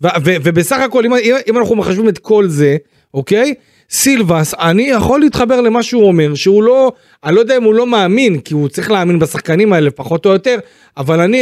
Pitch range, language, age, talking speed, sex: 165-210 Hz, Hebrew, 40-59, 205 wpm, male